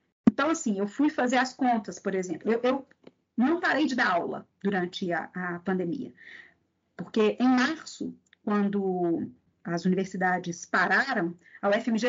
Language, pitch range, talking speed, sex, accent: Portuguese, 210-280 Hz, 145 wpm, female, Brazilian